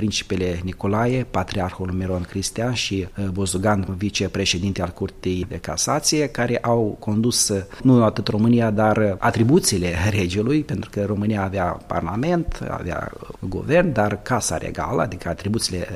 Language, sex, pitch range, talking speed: Romanian, male, 100-125 Hz, 125 wpm